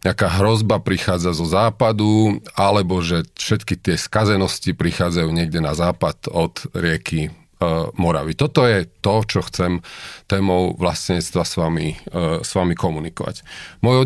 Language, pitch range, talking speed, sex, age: Slovak, 90-115 Hz, 125 wpm, male, 40-59